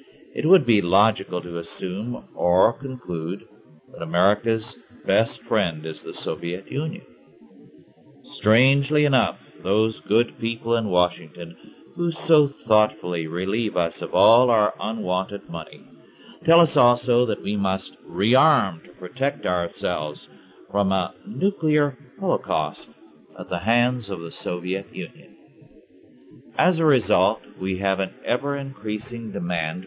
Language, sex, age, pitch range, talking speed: English, male, 50-69, 90-125 Hz, 125 wpm